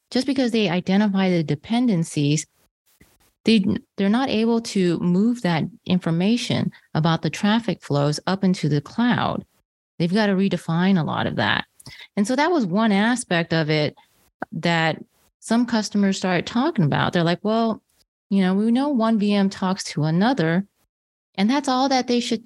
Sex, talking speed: female, 170 wpm